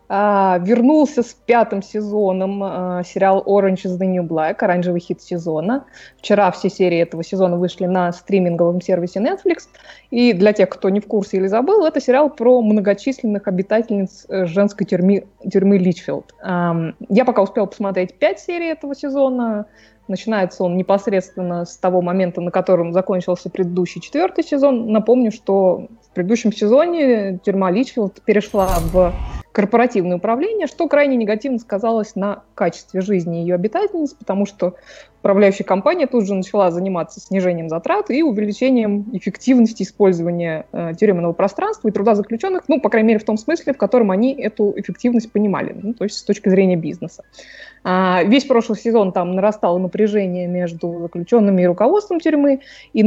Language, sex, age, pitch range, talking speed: Russian, female, 20-39, 185-235 Hz, 155 wpm